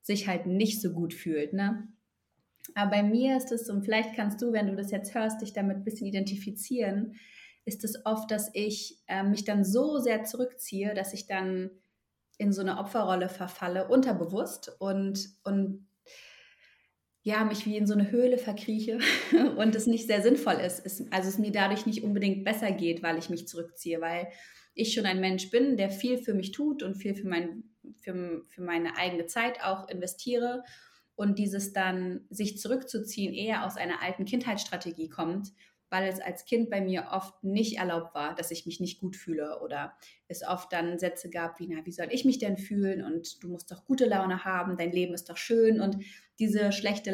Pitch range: 180-220 Hz